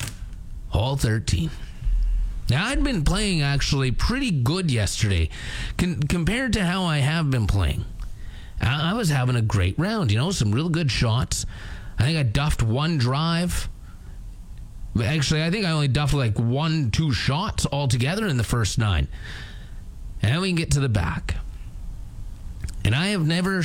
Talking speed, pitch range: 155 wpm, 95-150 Hz